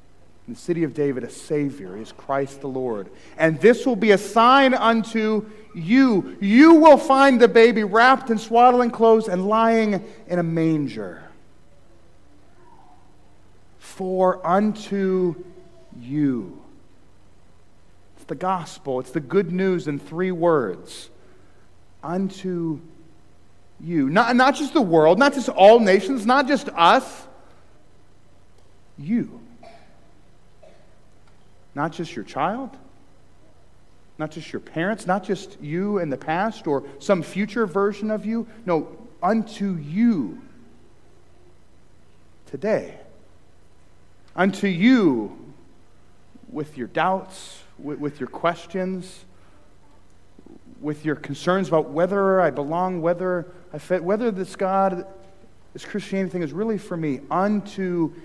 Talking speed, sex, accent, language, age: 115 wpm, male, American, English, 40-59